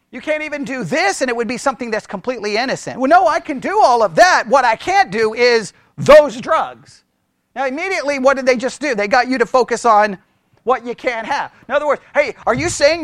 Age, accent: 40-59, American